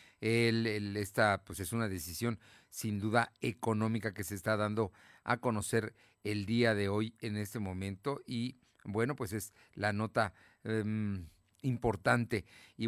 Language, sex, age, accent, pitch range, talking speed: Spanish, male, 40-59, Mexican, 110-145 Hz, 150 wpm